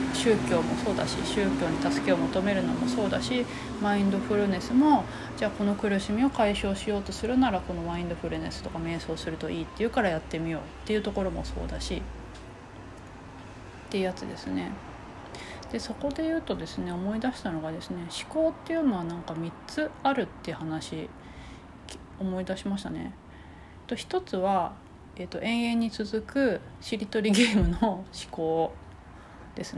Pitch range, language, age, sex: 165-245 Hz, Japanese, 30-49, female